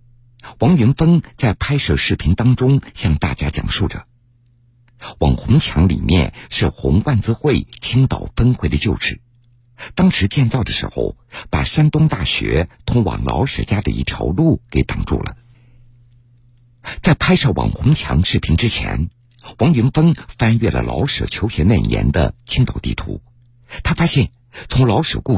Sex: male